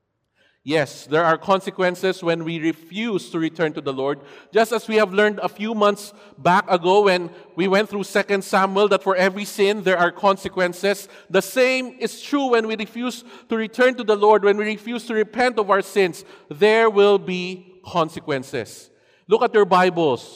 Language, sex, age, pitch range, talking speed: English, male, 50-69, 170-215 Hz, 185 wpm